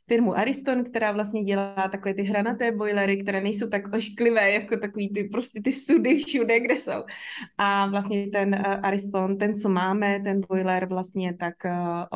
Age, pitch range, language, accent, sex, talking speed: 20-39, 185-215 Hz, Czech, native, female, 175 wpm